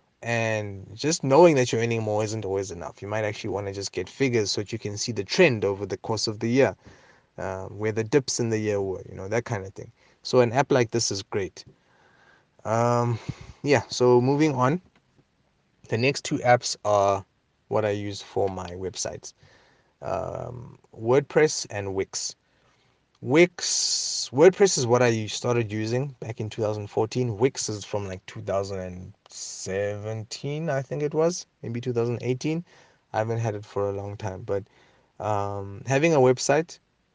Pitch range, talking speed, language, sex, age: 100-130 Hz, 170 wpm, English, male, 20-39